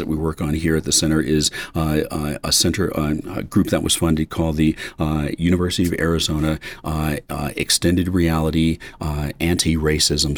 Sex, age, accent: male, 40-59, American